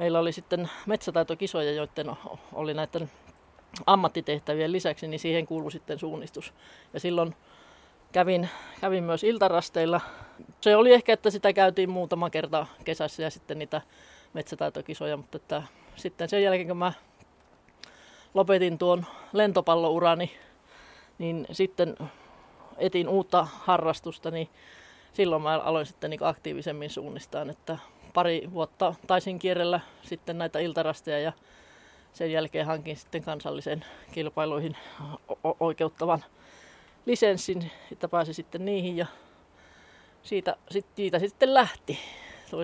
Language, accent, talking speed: Finnish, native, 115 wpm